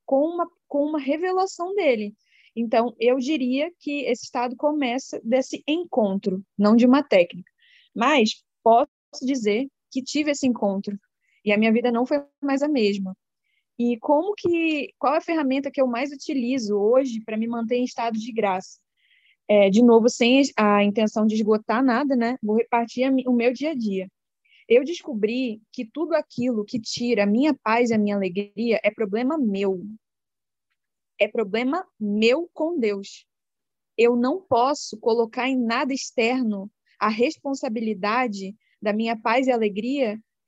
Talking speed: 160 wpm